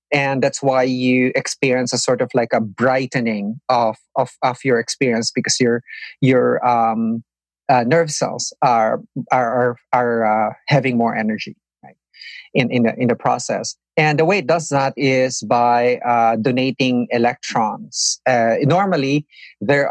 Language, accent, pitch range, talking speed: English, Filipino, 120-140 Hz, 155 wpm